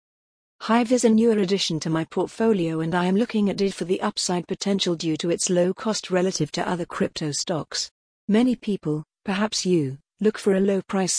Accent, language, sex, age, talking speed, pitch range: British, English, female, 50-69, 200 wpm, 170-205 Hz